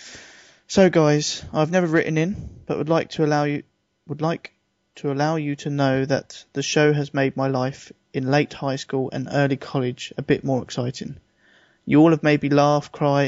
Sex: male